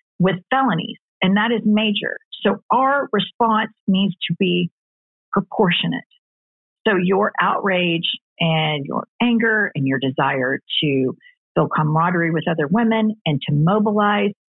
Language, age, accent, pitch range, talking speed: English, 50-69, American, 175-220 Hz, 130 wpm